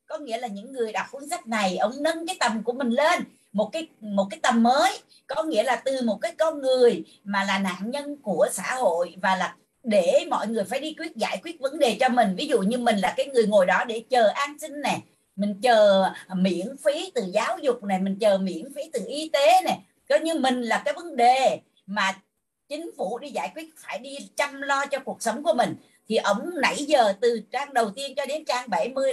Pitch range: 220-310 Hz